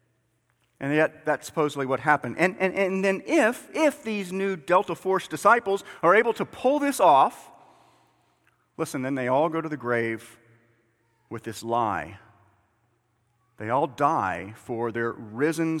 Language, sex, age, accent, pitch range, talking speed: English, male, 40-59, American, 110-175 Hz, 150 wpm